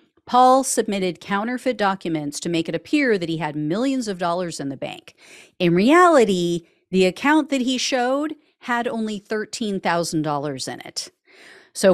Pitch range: 165-250 Hz